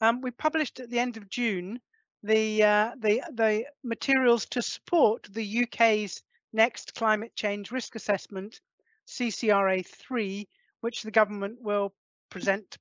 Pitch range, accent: 200-240 Hz, British